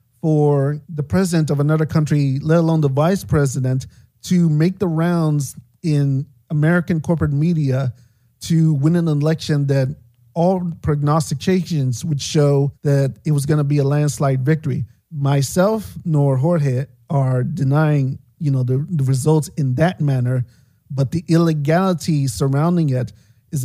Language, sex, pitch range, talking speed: English, male, 135-165 Hz, 140 wpm